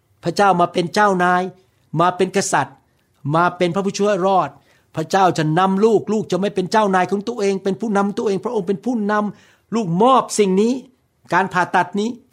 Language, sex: Thai, male